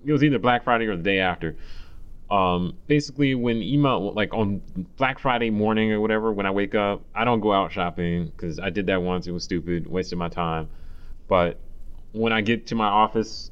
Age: 30-49